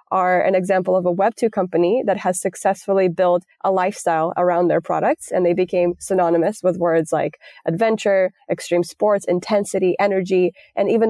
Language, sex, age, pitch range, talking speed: English, female, 20-39, 175-195 Hz, 160 wpm